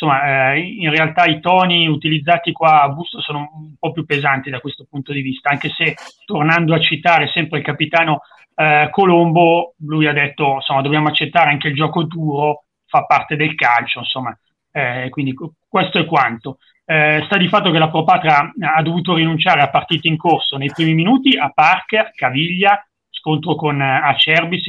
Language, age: Italian, 30-49